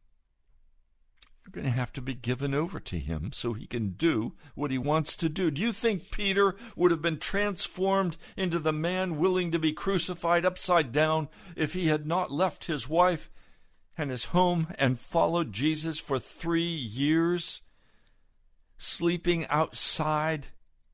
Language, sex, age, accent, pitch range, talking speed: English, male, 60-79, American, 120-170 Hz, 150 wpm